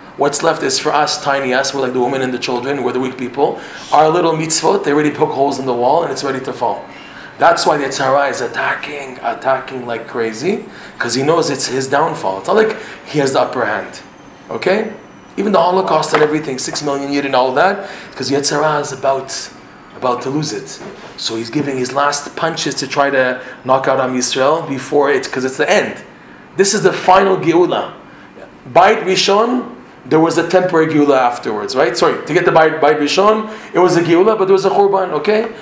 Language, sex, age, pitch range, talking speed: English, male, 30-49, 130-170 Hz, 210 wpm